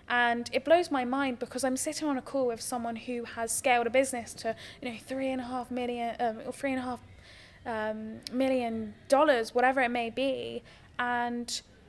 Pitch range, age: 230-255 Hz, 10-29